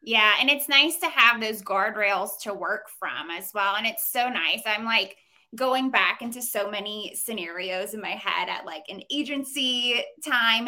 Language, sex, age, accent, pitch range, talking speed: English, female, 20-39, American, 205-255 Hz, 185 wpm